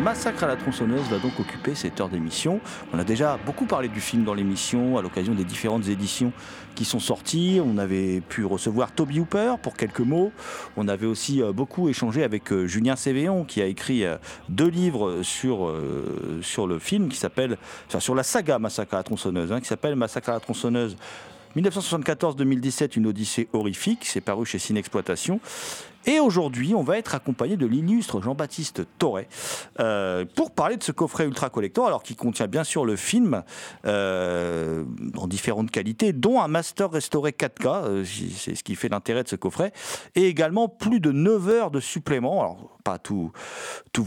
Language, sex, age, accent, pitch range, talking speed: French, male, 40-59, French, 105-160 Hz, 180 wpm